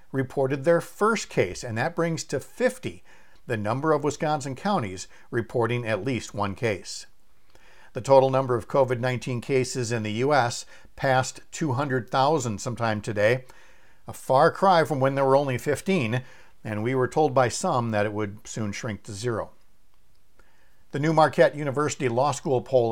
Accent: American